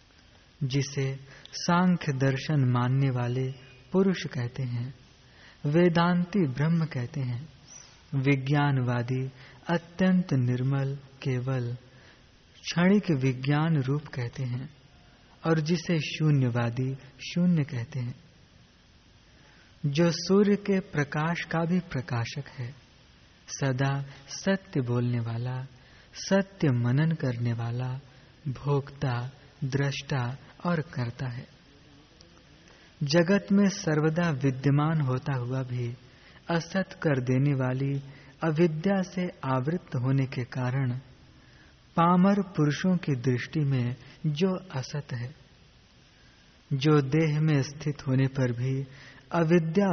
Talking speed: 95 wpm